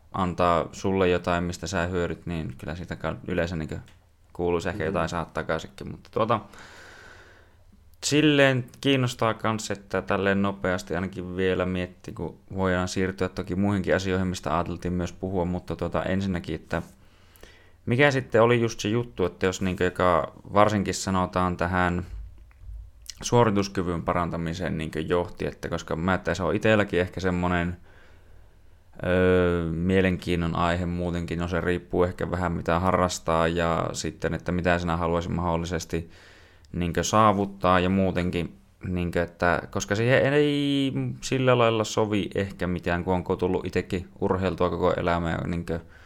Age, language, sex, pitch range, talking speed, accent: 20-39, Finnish, male, 85-95 Hz, 140 wpm, native